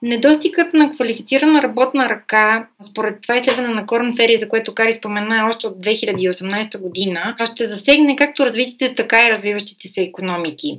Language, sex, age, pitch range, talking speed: Bulgarian, female, 20-39, 200-250 Hz, 155 wpm